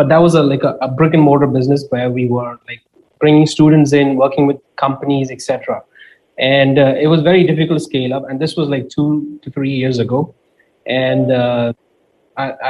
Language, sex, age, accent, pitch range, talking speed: English, male, 20-39, Indian, 130-150 Hz, 205 wpm